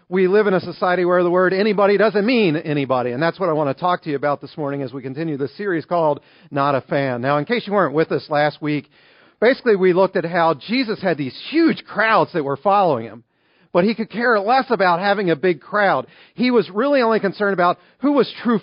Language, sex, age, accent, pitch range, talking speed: English, male, 40-59, American, 155-215 Hz, 240 wpm